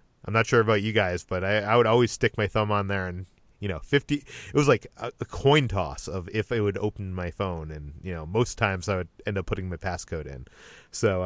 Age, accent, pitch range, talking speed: 30-49, American, 95-125 Hz, 255 wpm